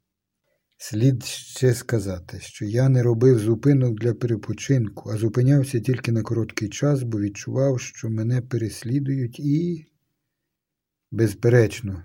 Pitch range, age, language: 105-135 Hz, 50-69, Ukrainian